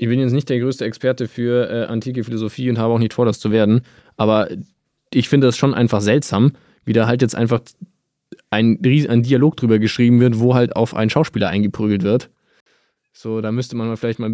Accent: German